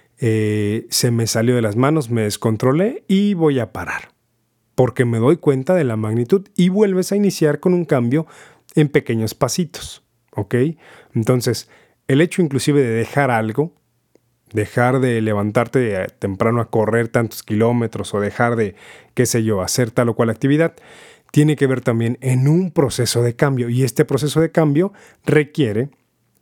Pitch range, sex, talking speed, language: 115-145 Hz, male, 165 wpm, Spanish